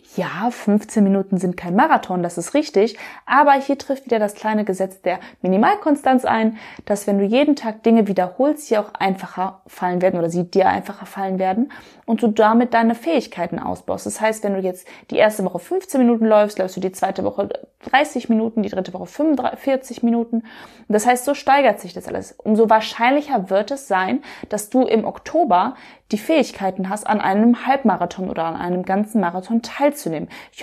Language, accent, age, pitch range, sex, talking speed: German, German, 20-39, 195-250 Hz, female, 185 wpm